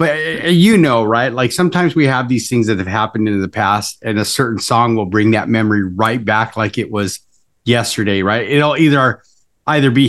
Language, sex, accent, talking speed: English, male, American, 215 wpm